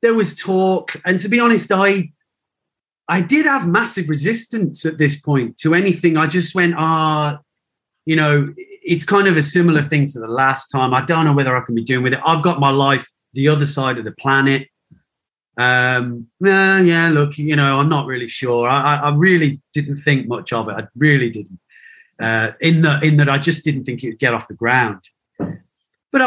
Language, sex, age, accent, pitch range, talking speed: English, male, 30-49, British, 130-165 Hz, 210 wpm